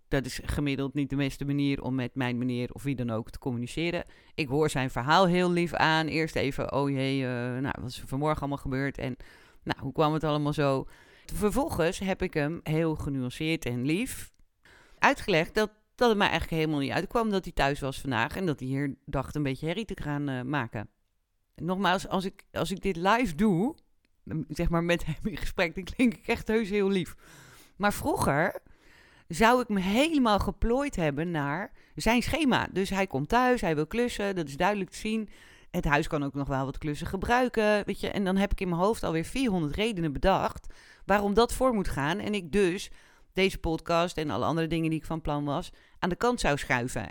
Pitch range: 140-195 Hz